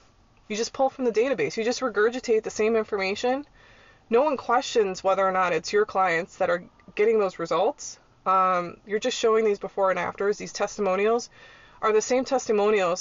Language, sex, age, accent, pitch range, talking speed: English, female, 20-39, American, 185-235 Hz, 185 wpm